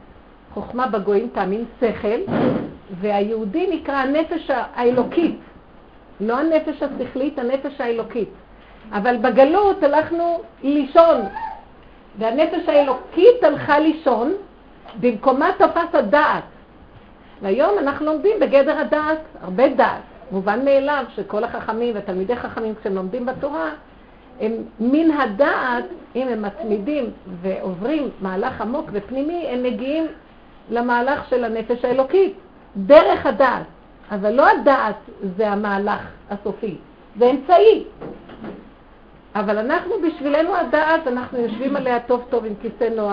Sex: female